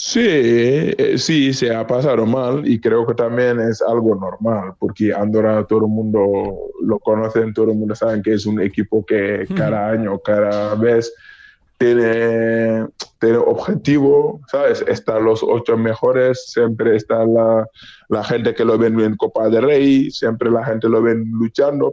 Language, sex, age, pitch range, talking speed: Spanish, male, 20-39, 110-120 Hz, 160 wpm